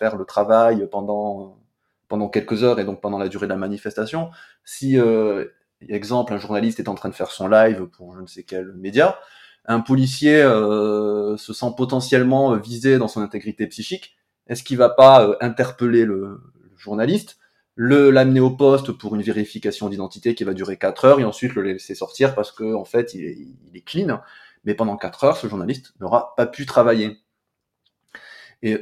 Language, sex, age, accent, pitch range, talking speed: French, male, 20-39, French, 105-130 Hz, 190 wpm